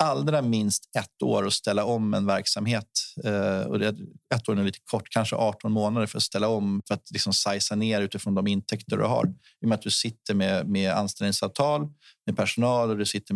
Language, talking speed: Swedish, 205 wpm